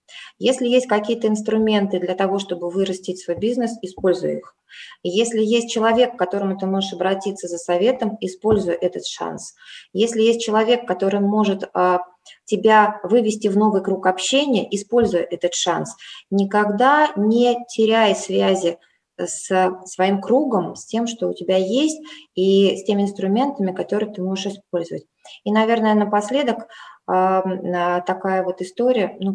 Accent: native